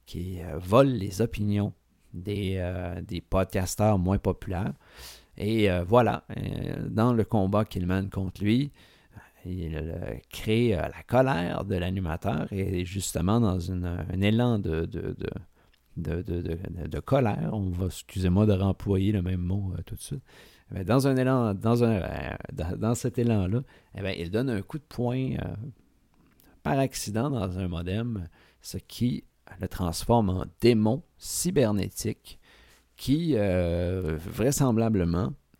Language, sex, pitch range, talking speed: French, male, 90-115 Hz, 155 wpm